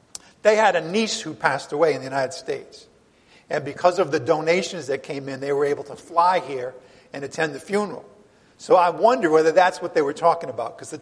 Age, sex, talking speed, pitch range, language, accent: 50-69, male, 225 wpm, 145-180 Hz, English, American